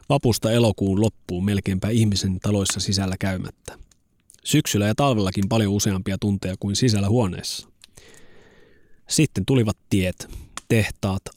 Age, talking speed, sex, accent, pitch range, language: 30-49, 110 wpm, male, native, 95-115 Hz, Finnish